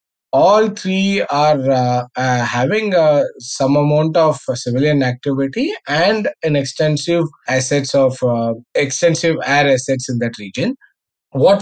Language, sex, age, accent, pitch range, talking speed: English, male, 20-39, Indian, 120-155 Hz, 135 wpm